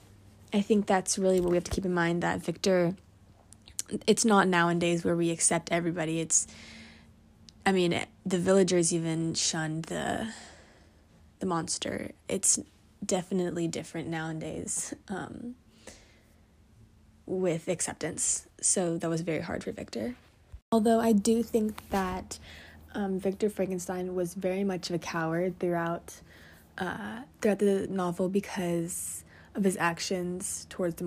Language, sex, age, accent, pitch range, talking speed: English, female, 20-39, American, 160-195 Hz, 135 wpm